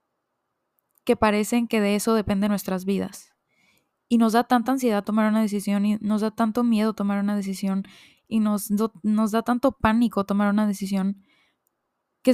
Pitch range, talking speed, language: 205-235 Hz, 170 wpm, Spanish